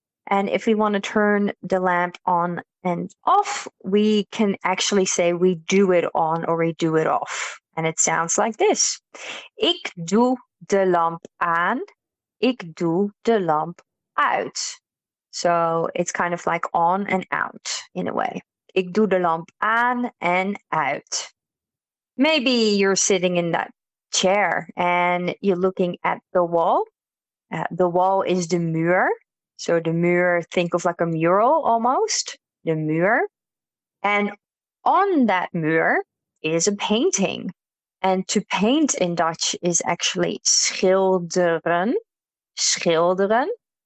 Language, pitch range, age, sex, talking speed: Dutch, 175-215 Hz, 30-49, female, 140 wpm